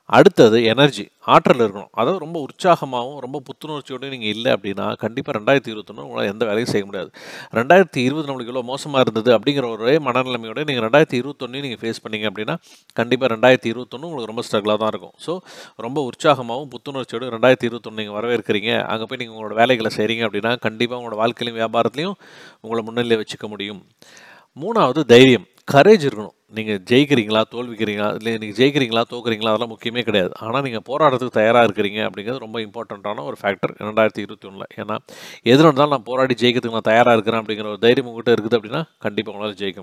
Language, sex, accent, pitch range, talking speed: Tamil, male, native, 110-135 Hz, 165 wpm